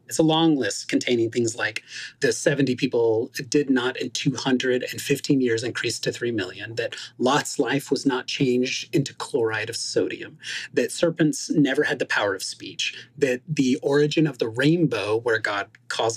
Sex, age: male, 30-49